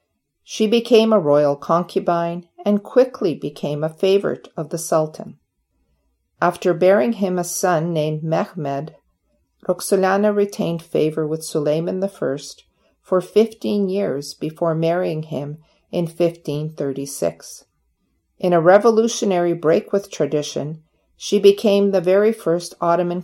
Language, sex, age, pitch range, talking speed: English, female, 50-69, 155-195 Hz, 120 wpm